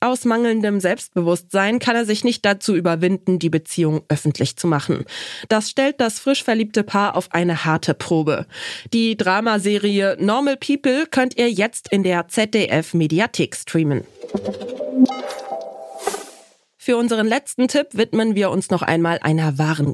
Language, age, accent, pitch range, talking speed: German, 20-39, German, 170-245 Hz, 140 wpm